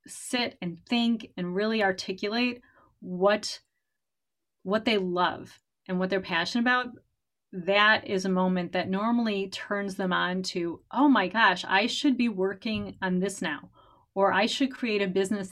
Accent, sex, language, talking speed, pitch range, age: American, female, English, 160 wpm, 185-220 Hz, 30-49